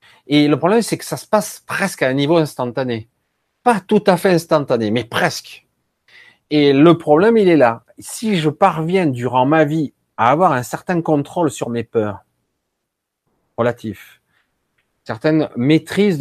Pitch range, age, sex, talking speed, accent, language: 110-160 Hz, 40-59, male, 160 wpm, French, French